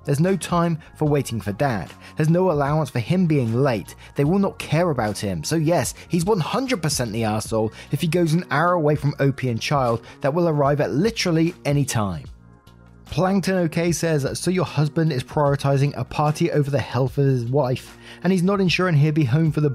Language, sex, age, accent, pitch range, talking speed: English, male, 20-39, British, 125-165 Hz, 205 wpm